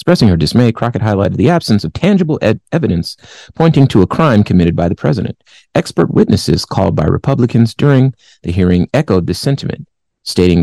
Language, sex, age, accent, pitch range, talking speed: English, male, 30-49, American, 85-120 Hz, 170 wpm